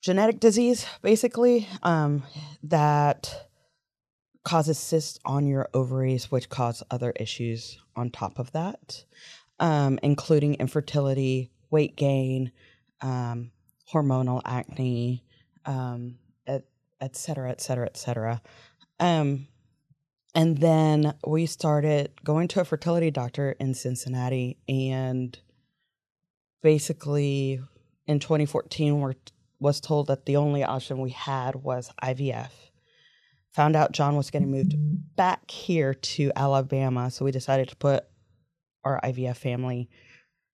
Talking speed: 115 wpm